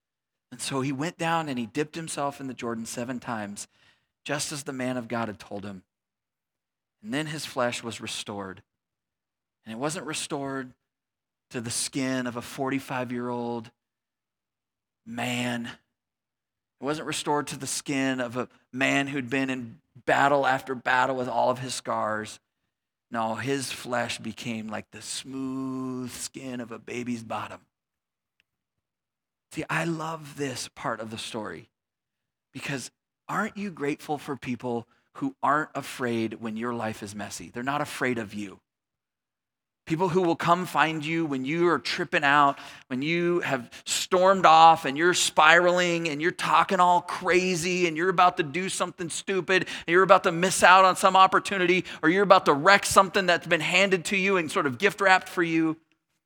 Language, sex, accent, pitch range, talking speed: English, male, American, 120-170 Hz, 165 wpm